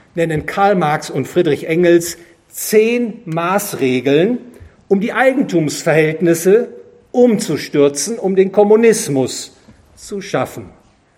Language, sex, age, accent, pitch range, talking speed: English, male, 50-69, German, 155-210 Hz, 90 wpm